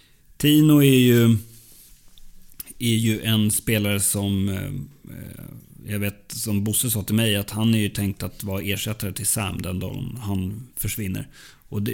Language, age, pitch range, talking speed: English, 30-49, 100-115 Hz, 150 wpm